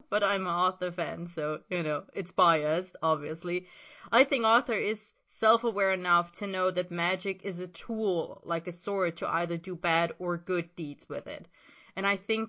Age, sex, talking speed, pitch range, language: 20-39, female, 185 wpm, 175-205 Hz, English